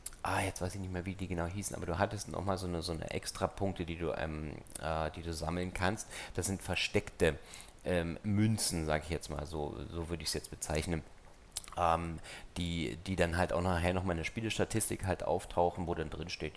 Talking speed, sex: 205 wpm, male